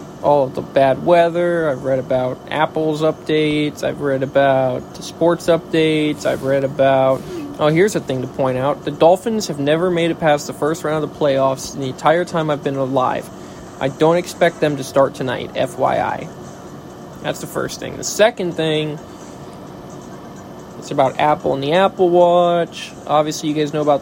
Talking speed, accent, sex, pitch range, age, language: 175 wpm, American, male, 135-170 Hz, 20-39, English